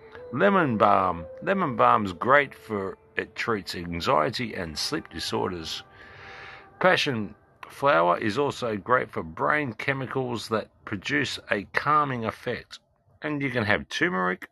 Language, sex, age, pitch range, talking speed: English, male, 50-69, 100-135 Hz, 130 wpm